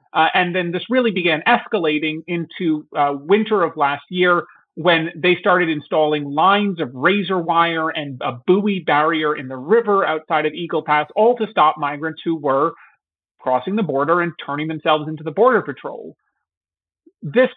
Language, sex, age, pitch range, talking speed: English, male, 30-49, 150-195 Hz, 165 wpm